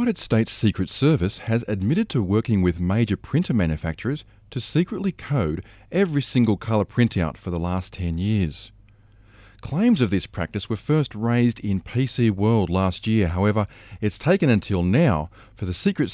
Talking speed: 165 wpm